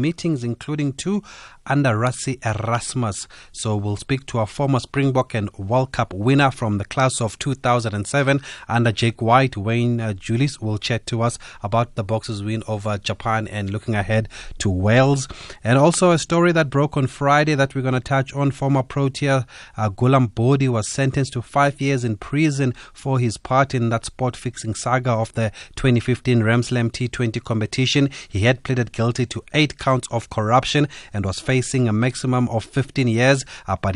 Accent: South African